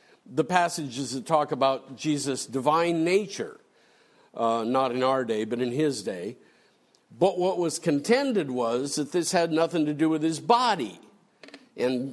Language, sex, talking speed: English, male, 160 wpm